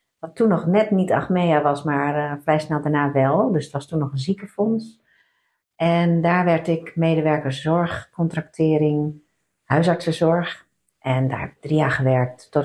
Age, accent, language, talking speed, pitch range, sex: 50-69, Dutch, Dutch, 155 wpm, 140-165 Hz, female